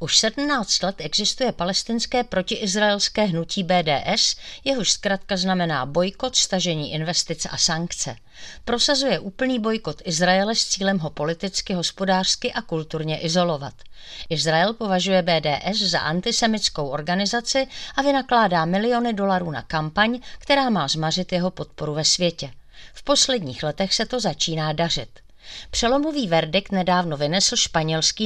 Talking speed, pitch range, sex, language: 125 wpm, 160-220 Hz, female, Czech